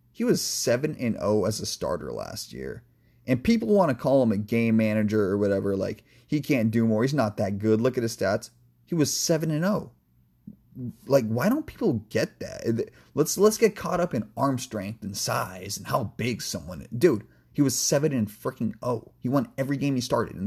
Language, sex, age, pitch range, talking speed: English, male, 30-49, 105-125 Hz, 195 wpm